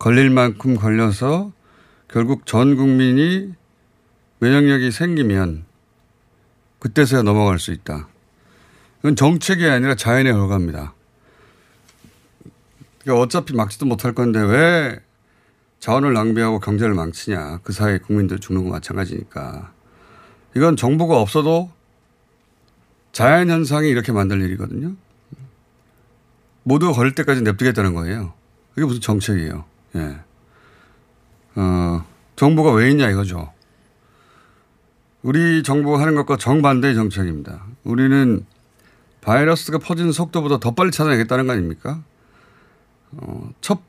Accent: native